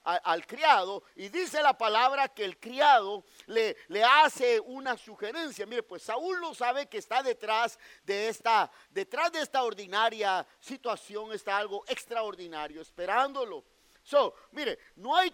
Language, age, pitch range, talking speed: English, 40-59, 200-315 Hz, 150 wpm